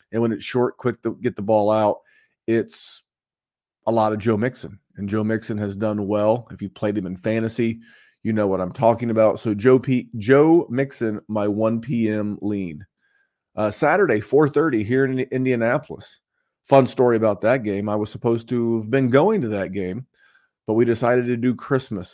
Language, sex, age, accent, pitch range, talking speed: English, male, 30-49, American, 105-130 Hz, 185 wpm